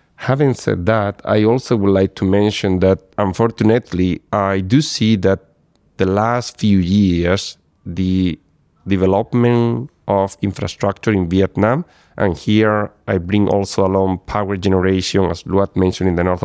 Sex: male